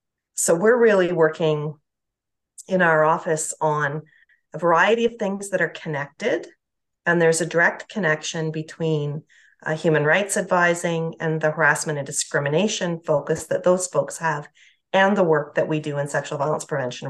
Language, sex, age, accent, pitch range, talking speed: English, female, 40-59, American, 155-175 Hz, 160 wpm